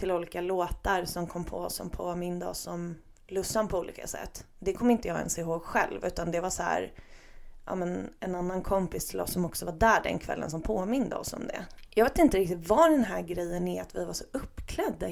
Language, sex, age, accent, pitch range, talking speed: Swedish, female, 20-39, native, 170-215 Hz, 240 wpm